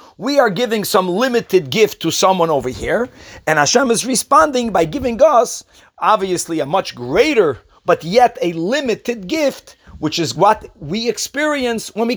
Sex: male